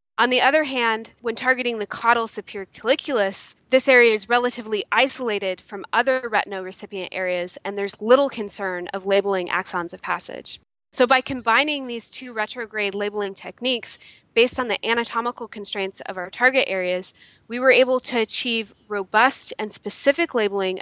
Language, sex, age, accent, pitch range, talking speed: English, female, 20-39, American, 195-235 Hz, 160 wpm